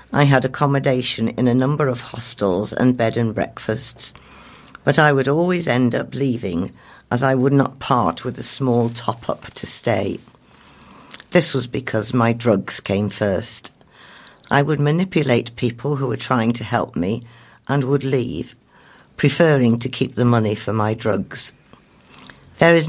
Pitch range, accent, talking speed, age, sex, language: 110-135 Hz, British, 155 wpm, 50-69, female, English